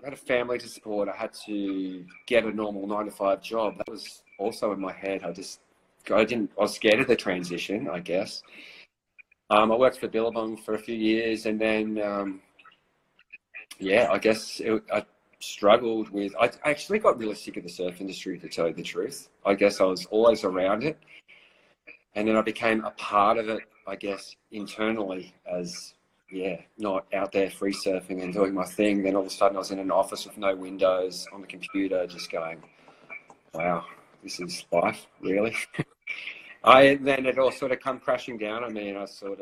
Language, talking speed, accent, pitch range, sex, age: English, 200 wpm, Australian, 95-115 Hz, male, 30-49